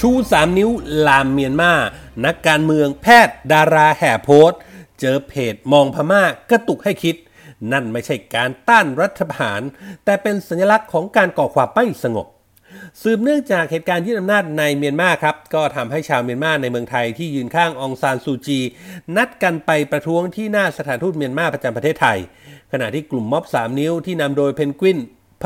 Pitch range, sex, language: 135-185 Hz, male, Thai